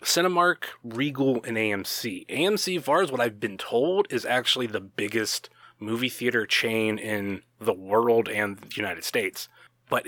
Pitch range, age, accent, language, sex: 110-135 Hz, 20-39, American, Chinese, male